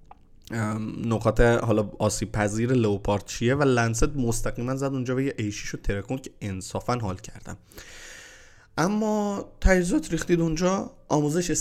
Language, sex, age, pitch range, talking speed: Persian, male, 20-39, 105-135 Hz, 130 wpm